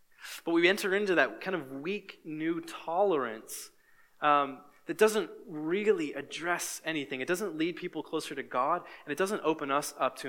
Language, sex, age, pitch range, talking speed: English, male, 20-39, 135-205 Hz, 175 wpm